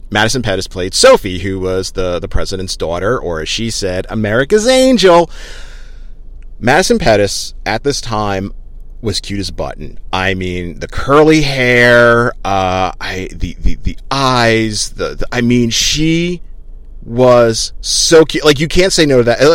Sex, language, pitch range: male, English, 95-125 Hz